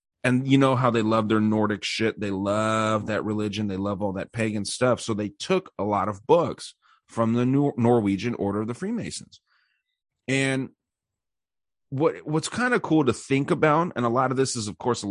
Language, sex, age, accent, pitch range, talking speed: English, male, 30-49, American, 105-130 Hz, 205 wpm